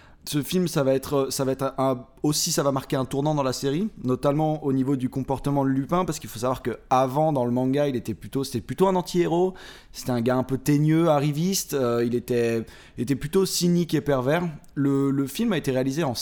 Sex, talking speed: male, 235 wpm